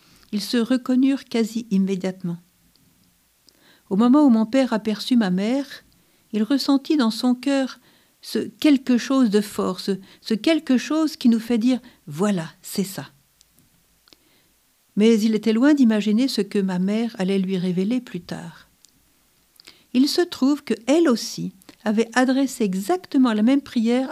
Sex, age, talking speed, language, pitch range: female, 50-69, 145 wpm, French, 195-255 Hz